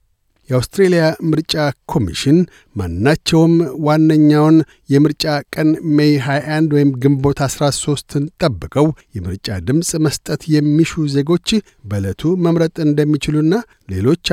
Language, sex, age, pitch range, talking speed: Amharic, male, 60-79, 130-155 Hz, 90 wpm